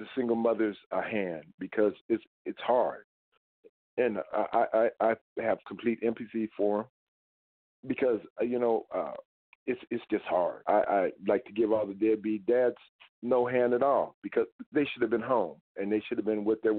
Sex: male